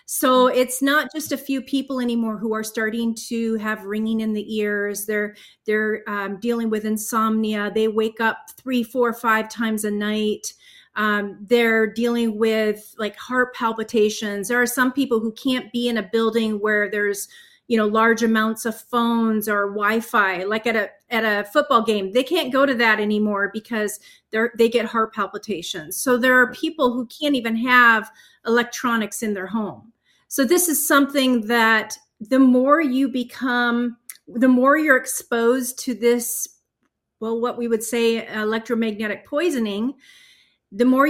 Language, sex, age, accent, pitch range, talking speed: English, female, 30-49, American, 220-270 Hz, 165 wpm